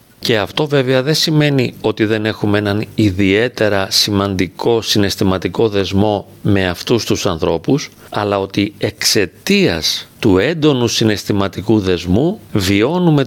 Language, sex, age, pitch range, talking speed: Greek, male, 40-59, 100-135 Hz, 115 wpm